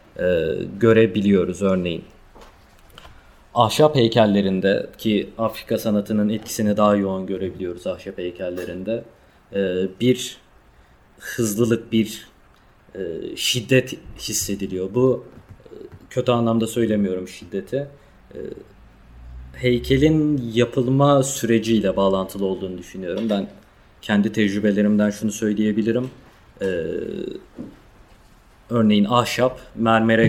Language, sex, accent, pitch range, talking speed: Turkish, male, native, 100-120 Hz, 75 wpm